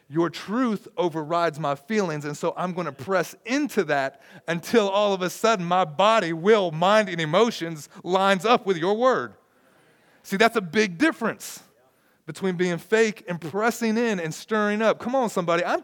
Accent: American